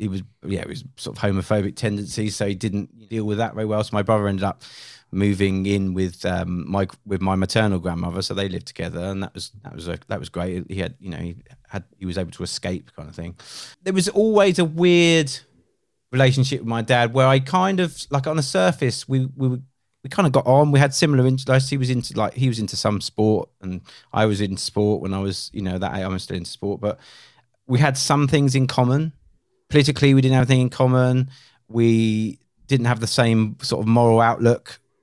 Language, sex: English, male